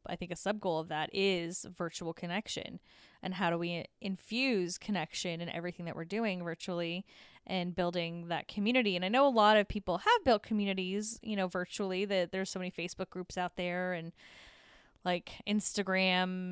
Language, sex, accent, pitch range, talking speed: English, female, American, 165-195 Hz, 180 wpm